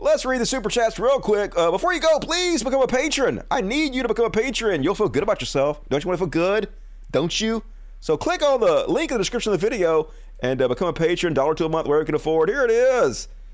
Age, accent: 30-49, American